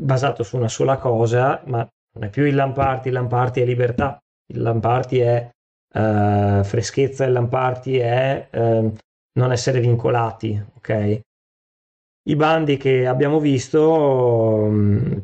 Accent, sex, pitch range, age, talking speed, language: native, male, 115-135 Hz, 20-39, 135 wpm, Italian